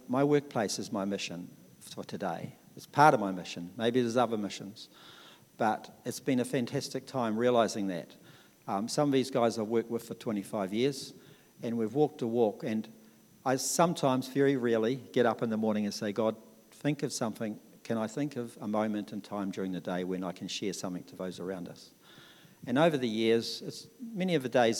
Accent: Australian